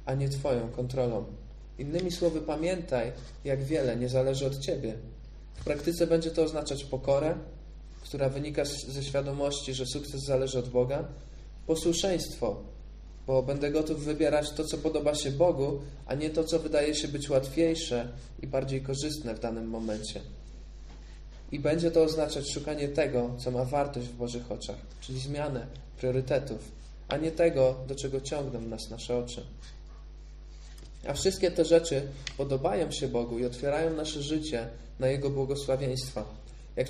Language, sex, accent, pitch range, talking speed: Polish, male, native, 125-155 Hz, 150 wpm